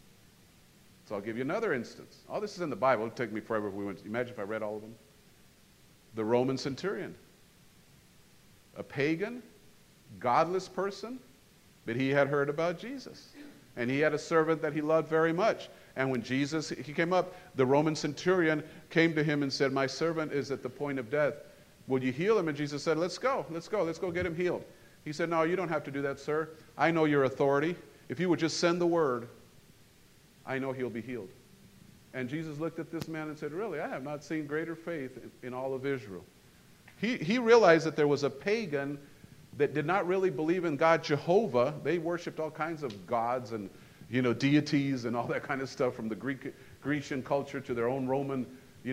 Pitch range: 130-170 Hz